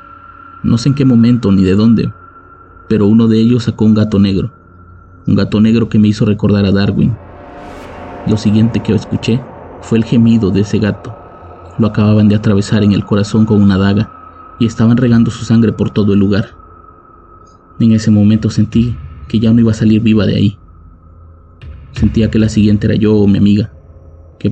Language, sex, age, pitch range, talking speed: Spanish, male, 30-49, 100-115 Hz, 190 wpm